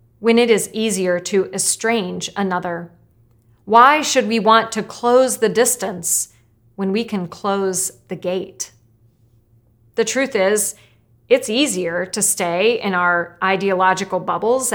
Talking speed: 130 wpm